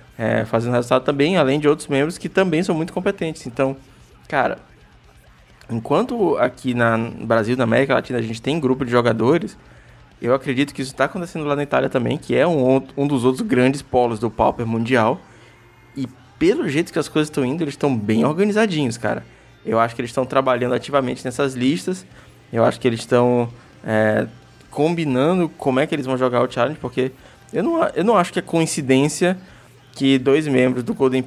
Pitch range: 120-140 Hz